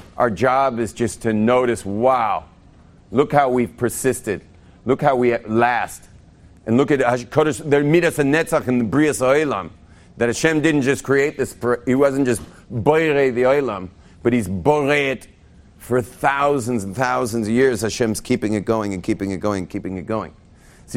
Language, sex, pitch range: English, male, 95-135 Hz